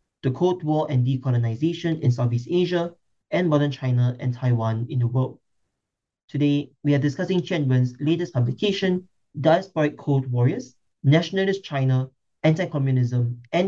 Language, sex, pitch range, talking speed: English, male, 125-155 Hz, 135 wpm